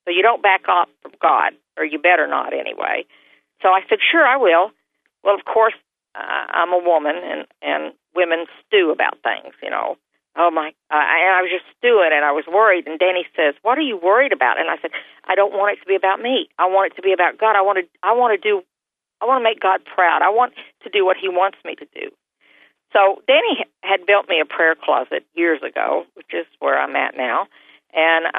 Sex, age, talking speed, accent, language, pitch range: female, 50-69, 230 wpm, American, English, 165-215 Hz